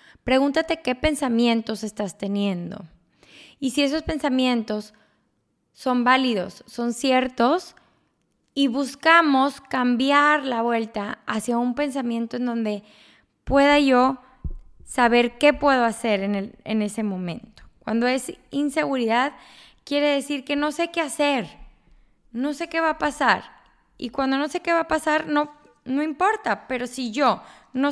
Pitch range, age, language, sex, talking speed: 215-285 Hz, 20-39, Spanish, female, 140 wpm